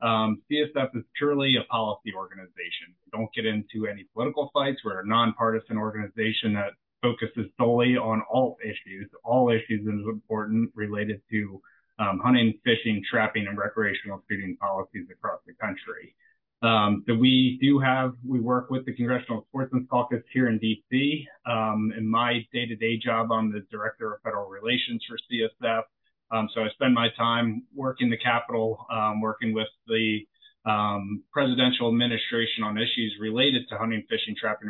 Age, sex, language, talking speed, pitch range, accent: 30-49, male, English, 160 wpm, 110-125 Hz, American